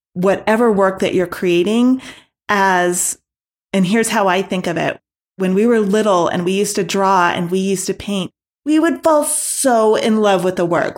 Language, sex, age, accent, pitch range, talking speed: English, female, 30-49, American, 185-230 Hz, 195 wpm